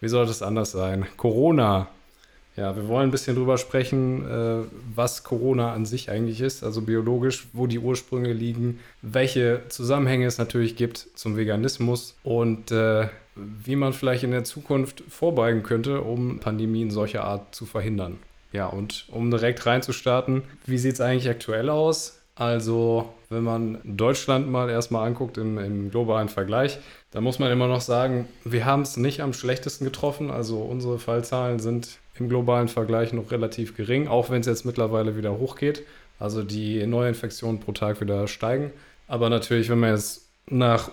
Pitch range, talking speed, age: 110-125 Hz, 165 wpm, 20-39